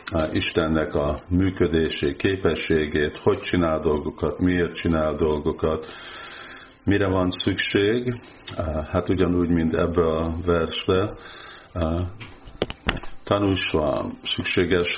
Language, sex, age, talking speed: Hungarian, male, 50-69, 90 wpm